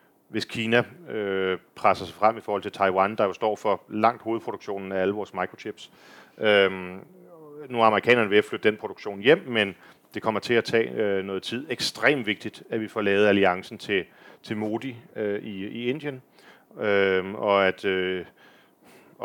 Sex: male